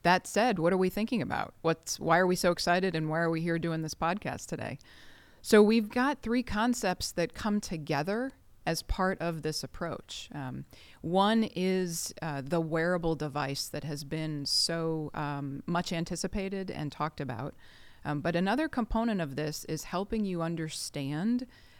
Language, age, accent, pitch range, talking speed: English, 30-49, American, 155-195 Hz, 170 wpm